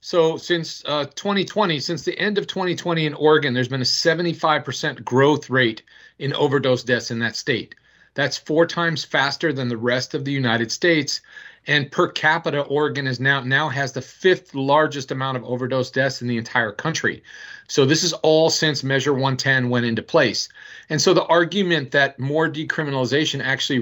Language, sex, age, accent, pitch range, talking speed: English, male, 40-59, American, 125-155 Hz, 180 wpm